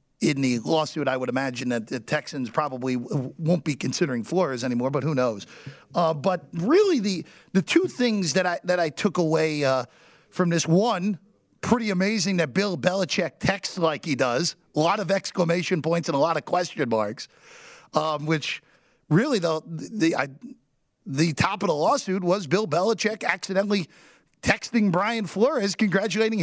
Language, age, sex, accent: English, 40-59, male, American